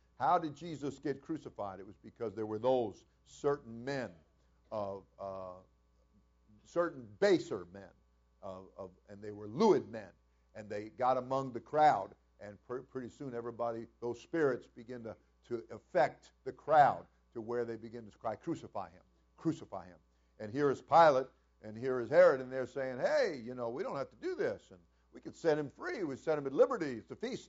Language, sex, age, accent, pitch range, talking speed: English, male, 50-69, American, 90-130 Hz, 190 wpm